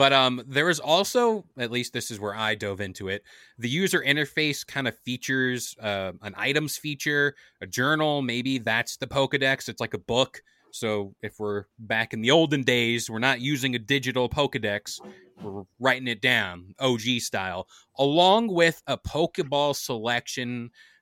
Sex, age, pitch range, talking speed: male, 20-39, 115-145 Hz, 170 wpm